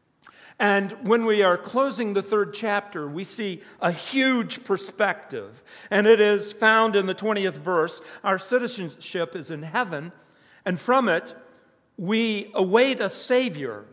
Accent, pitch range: American, 160-215 Hz